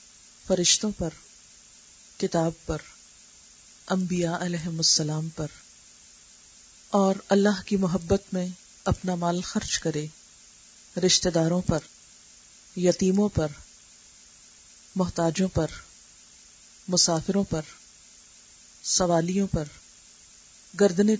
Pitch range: 160-195 Hz